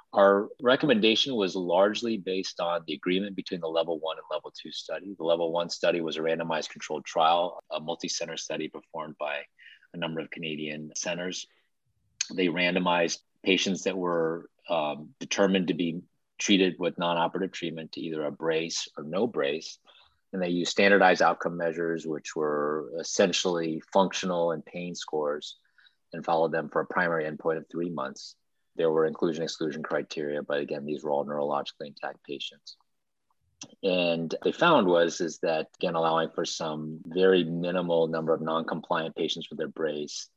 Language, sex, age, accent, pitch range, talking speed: English, male, 30-49, American, 75-90 Hz, 160 wpm